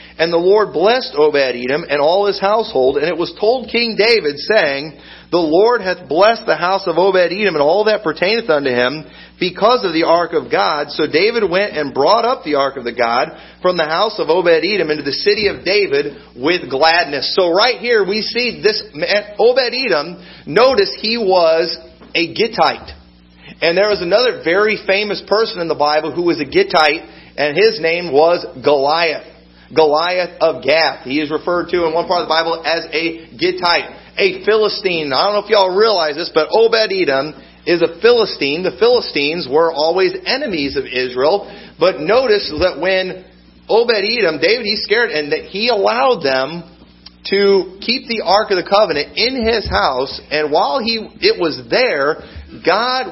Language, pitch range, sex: English, 160-230 Hz, male